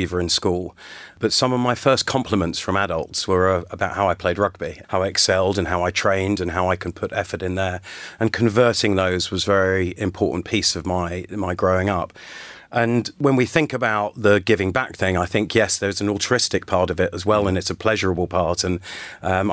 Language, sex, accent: English, male, British